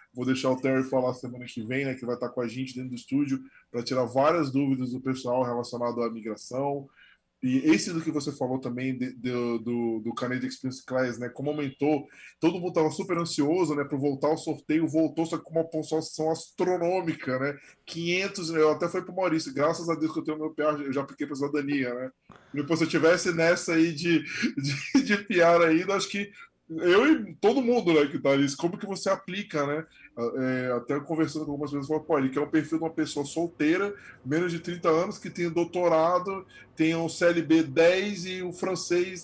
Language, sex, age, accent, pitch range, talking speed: Portuguese, male, 20-39, Brazilian, 135-175 Hz, 215 wpm